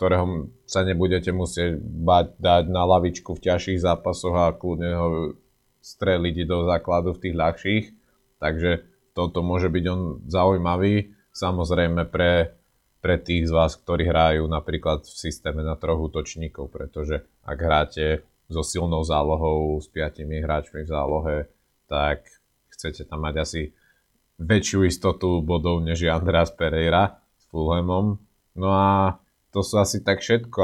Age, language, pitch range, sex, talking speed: 30-49, Slovak, 85-95 Hz, male, 140 wpm